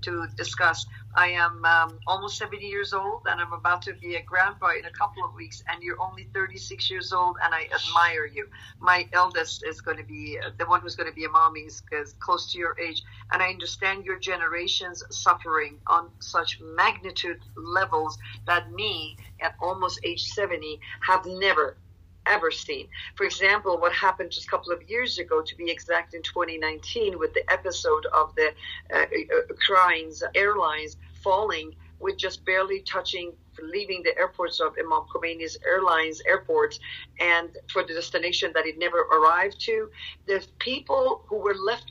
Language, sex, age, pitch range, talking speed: Persian, female, 50-69, 160-260 Hz, 175 wpm